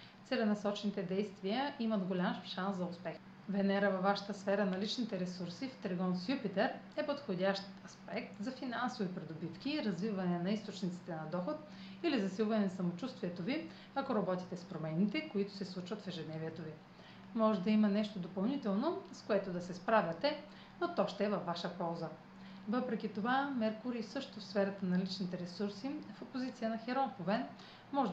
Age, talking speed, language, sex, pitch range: 30-49, 160 wpm, Bulgarian, female, 180-220 Hz